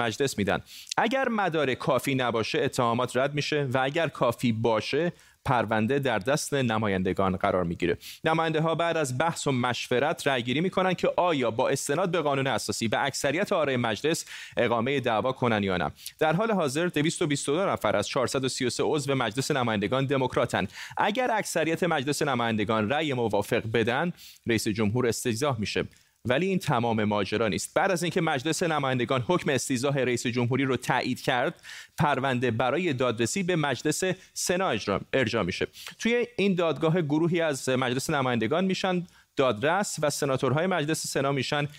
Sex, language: male, Persian